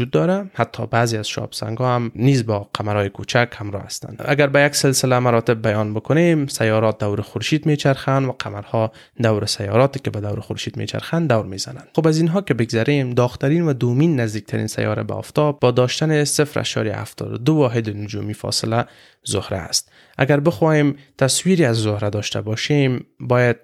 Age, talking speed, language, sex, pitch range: 20-39, 160 wpm, Persian, male, 110-140 Hz